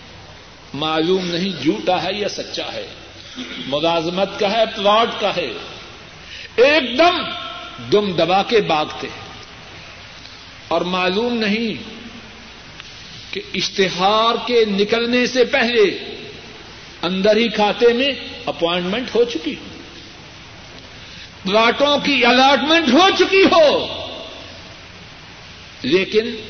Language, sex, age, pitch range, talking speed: Urdu, male, 60-79, 180-275 Hz, 100 wpm